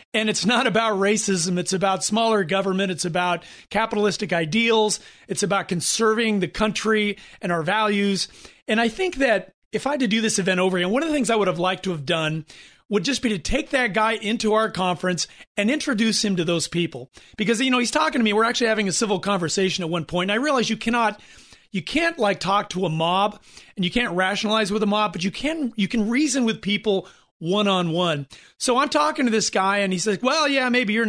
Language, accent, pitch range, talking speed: English, American, 185-230 Hz, 225 wpm